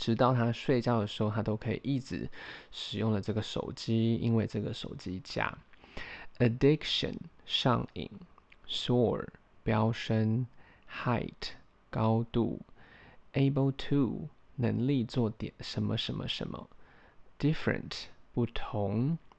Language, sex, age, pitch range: Chinese, male, 20-39, 110-130 Hz